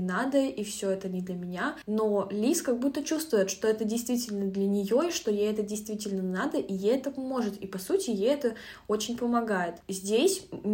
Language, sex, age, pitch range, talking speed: Russian, female, 20-39, 195-240 Hz, 195 wpm